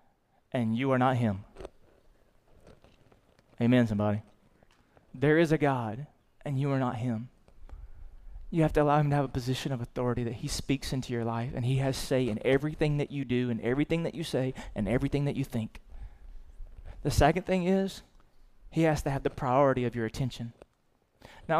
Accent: American